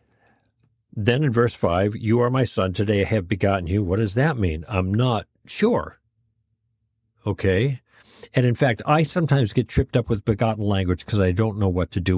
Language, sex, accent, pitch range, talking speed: English, male, American, 105-130 Hz, 190 wpm